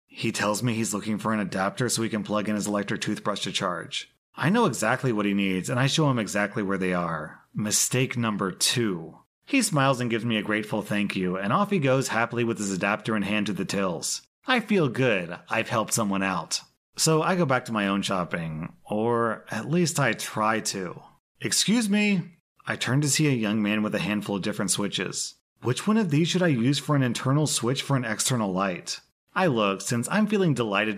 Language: English